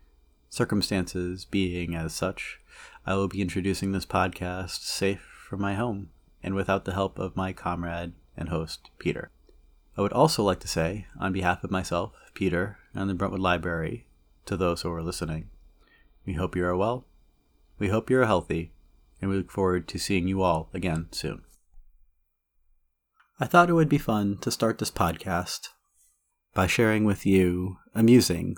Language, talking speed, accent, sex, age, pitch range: English, 165 wpm, American, male, 30-49, 85-100 Hz